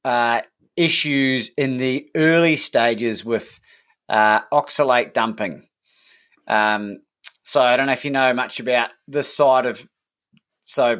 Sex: male